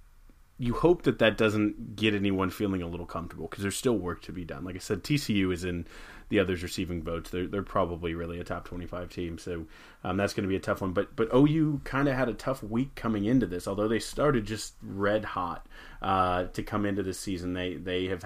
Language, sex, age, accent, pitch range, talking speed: English, male, 30-49, American, 90-105 Hz, 235 wpm